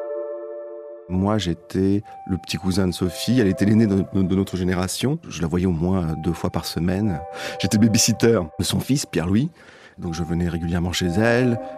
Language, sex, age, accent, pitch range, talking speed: French, male, 40-59, French, 85-110 Hz, 175 wpm